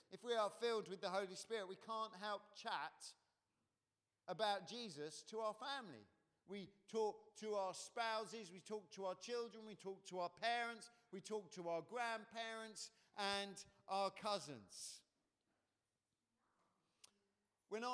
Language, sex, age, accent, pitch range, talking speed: English, male, 50-69, British, 185-225 Hz, 135 wpm